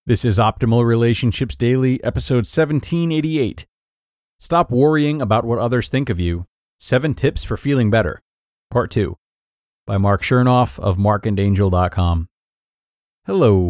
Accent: American